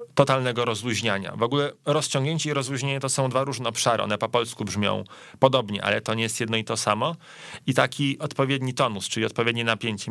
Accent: native